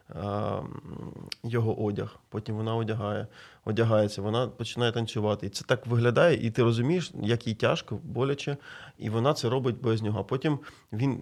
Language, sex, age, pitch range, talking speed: Ukrainian, male, 20-39, 105-120 Hz, 155 wpm